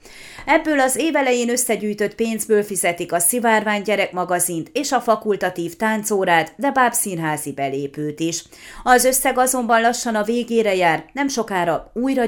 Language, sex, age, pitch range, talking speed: Hungarian, female, 30-49, 180-235 Hz, 135 wpm